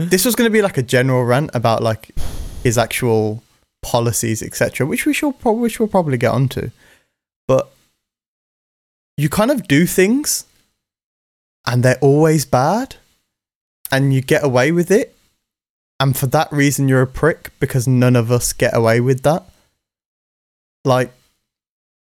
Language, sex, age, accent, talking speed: English, male, 20-39, British, 150 wpm